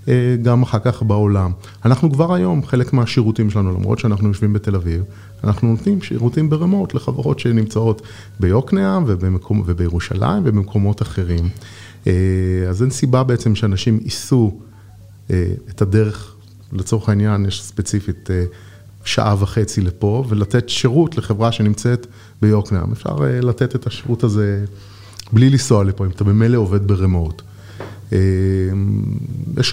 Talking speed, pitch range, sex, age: 120 wpm, 100-120 Hz, male, 30-49